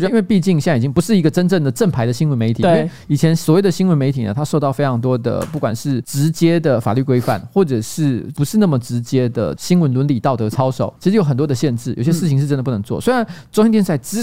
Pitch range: 125-175 Hz